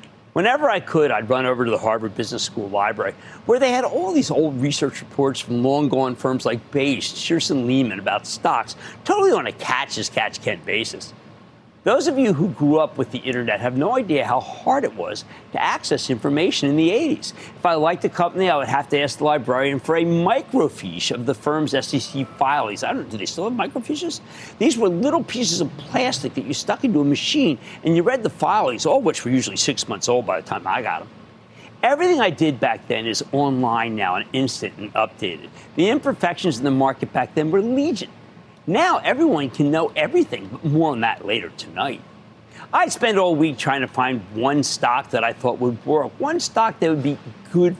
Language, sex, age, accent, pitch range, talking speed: English, male, 50-69, American, 130-220 Hz, 210 wpm